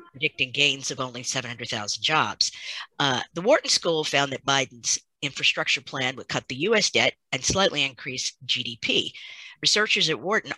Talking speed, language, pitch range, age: 155 wpm, English, 130-165 Hz, 50-69